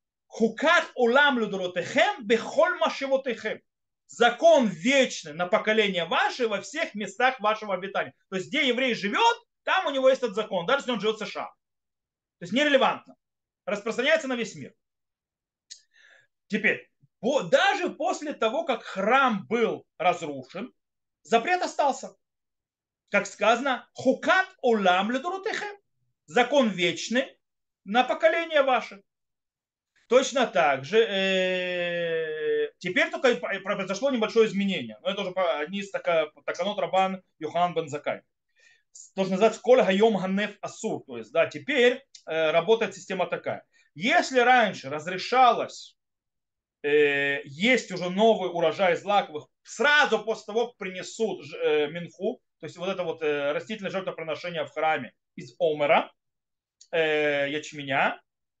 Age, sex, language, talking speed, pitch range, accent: 30-49, male, Russian, 115 wpm, 180-260 Hz, native